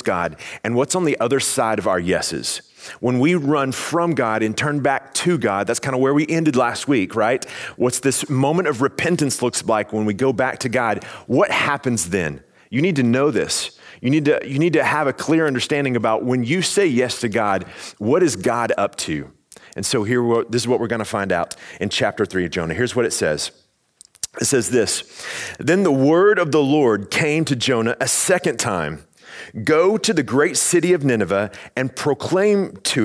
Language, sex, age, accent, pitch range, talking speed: English, male, 30-49, American, 115-160 Hz, 210 wpm